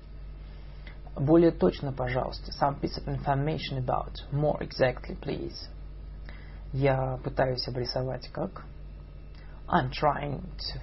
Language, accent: Russian, native